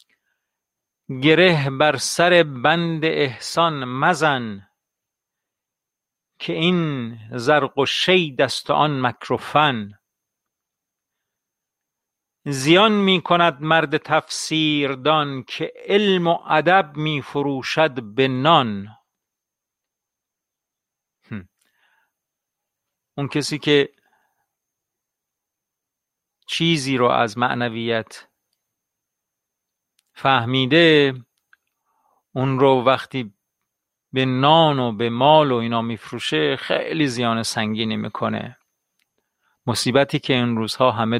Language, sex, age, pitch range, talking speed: Persian, male, 50-69, 125-155 Hz, 75 wpm